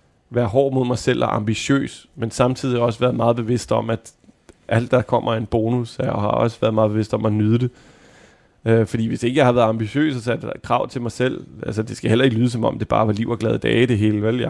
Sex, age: male, 30-49